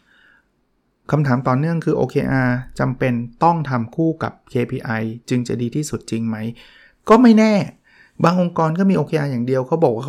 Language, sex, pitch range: Thai, male, 125-165 Hz